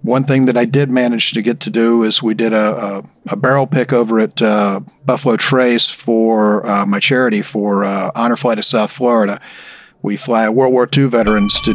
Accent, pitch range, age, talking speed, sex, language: American, 110-135 Hz, 40-59, 210 wpm, male, English